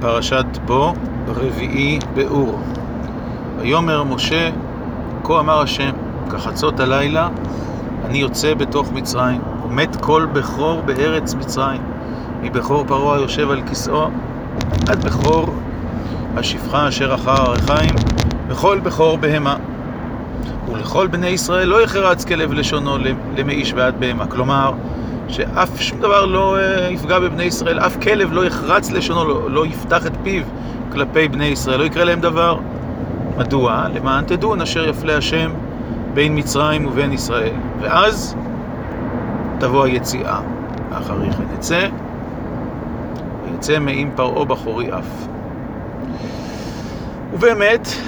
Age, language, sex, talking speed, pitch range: 40-59, Hebrew, male, 115 wpm, 125-155 Hz